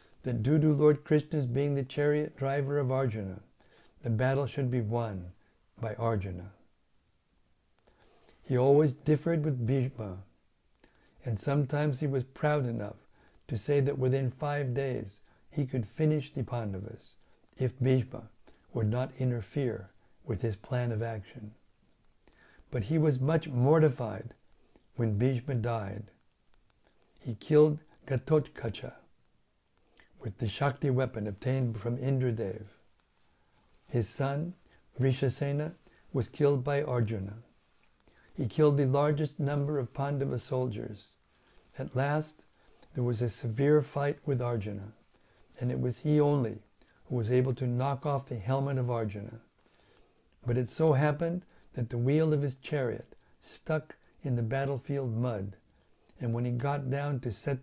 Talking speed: 135 wpm